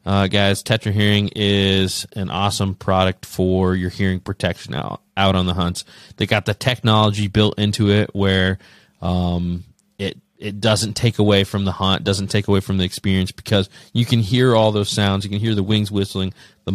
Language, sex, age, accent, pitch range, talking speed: English, male, 20-39, American, 90-105 Hz, 195 wpm